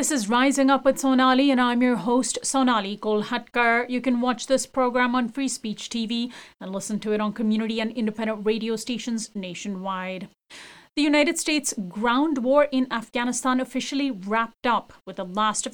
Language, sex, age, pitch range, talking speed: English, female, 30-49, 215-275 Hz, 175 wpm